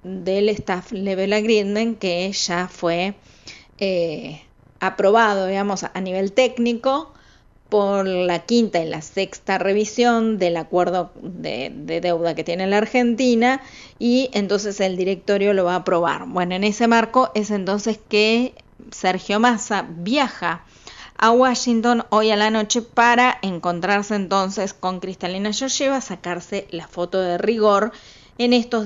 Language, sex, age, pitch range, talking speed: Spanish, female, 30-49, 180-220 Hz, 140 wpm